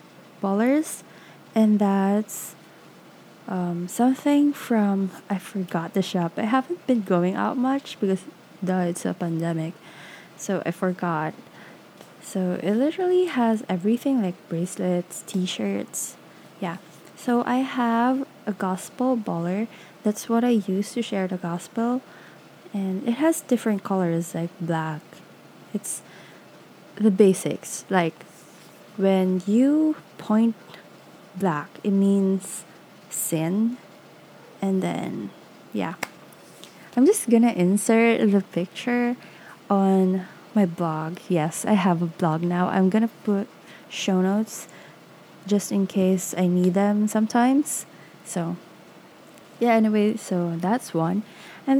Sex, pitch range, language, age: female, 180-235 Hz, English, 20-39